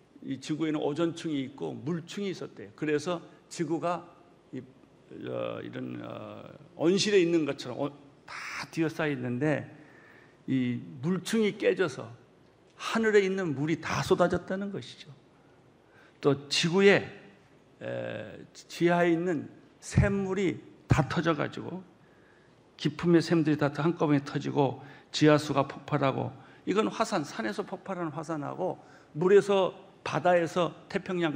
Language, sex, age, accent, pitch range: Korean, male, 50-69, native, 145-180 Hz